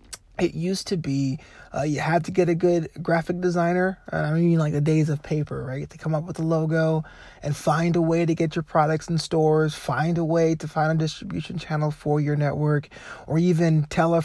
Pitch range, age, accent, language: 150-175 Hz, 20-39, American, English